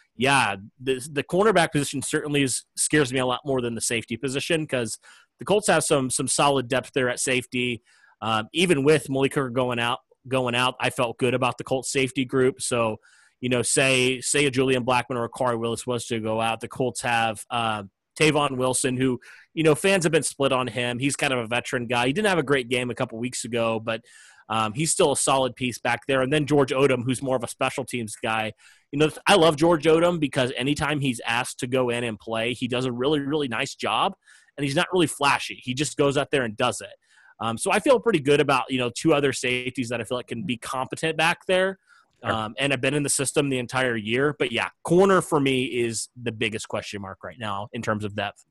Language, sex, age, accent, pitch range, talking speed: English, male, 30-49, American, 120-145 Hz, 240 wpm